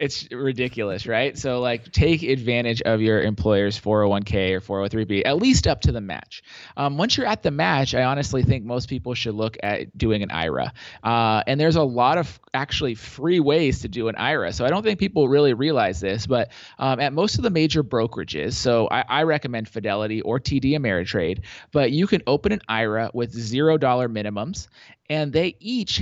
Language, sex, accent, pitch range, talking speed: English, male, American, 110-145 Hz, 195 wpm